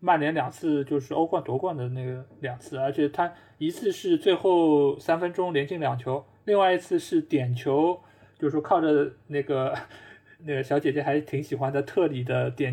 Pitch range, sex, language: 135-210 Hz, male, Chinese